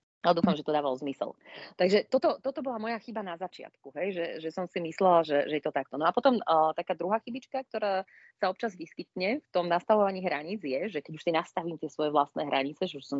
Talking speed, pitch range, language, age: 240 wpm, 155-215 Hz, Slovak, 30-49